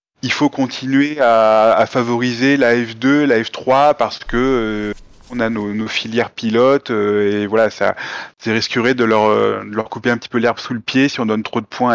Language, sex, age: French, male, 20-39